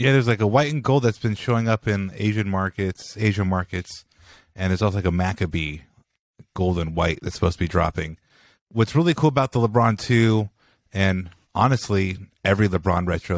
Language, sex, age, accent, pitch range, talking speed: English, male, 30-49, American, 85-105 Hz, 190 wpm